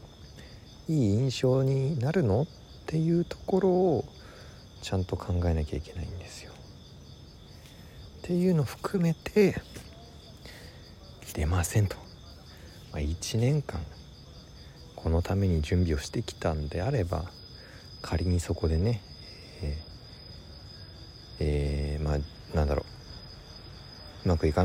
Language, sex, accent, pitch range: Japanese, male, native, 80-120 Hz